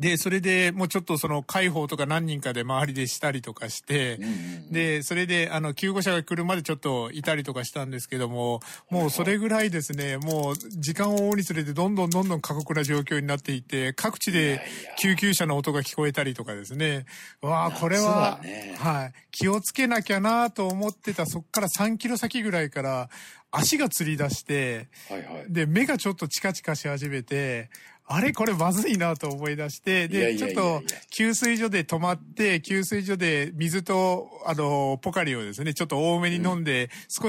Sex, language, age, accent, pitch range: male, Japanese, 50-69, native, 145-195 Hz